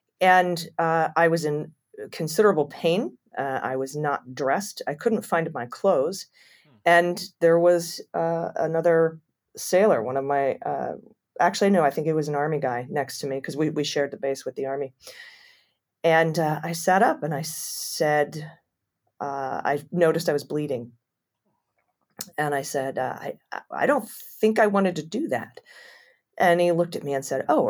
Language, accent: English, American